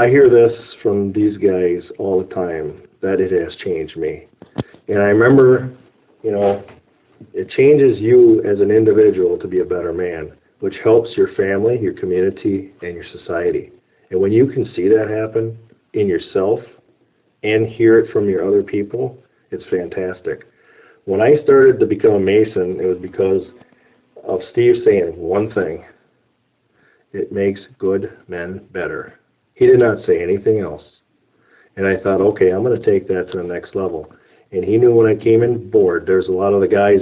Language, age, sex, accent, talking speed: English, 40-59, male, American, 180 wpm